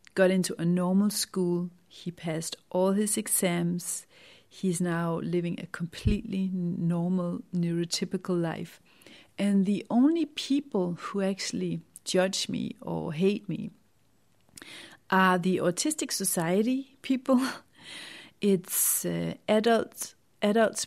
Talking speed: 110 wpm